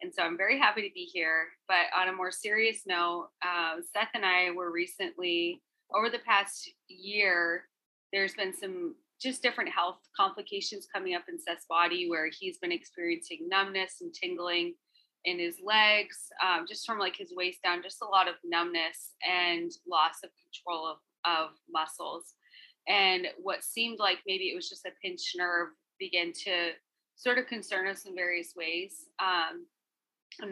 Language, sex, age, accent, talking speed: English, female, 20-39, American, 170 wpm